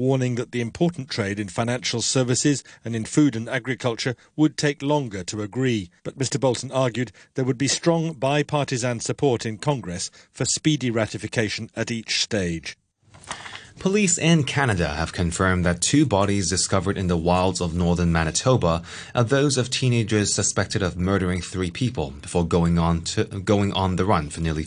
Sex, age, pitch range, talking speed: male, 30-49, 90-125 Hz, 170 wpm